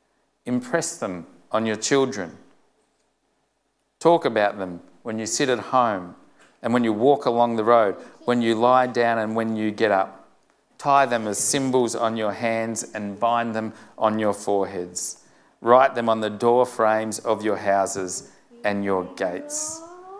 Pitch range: 100-120 Hz